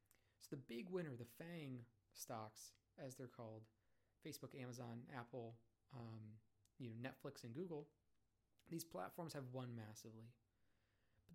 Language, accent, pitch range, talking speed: English, American, 110-160 Hz, 130 wpm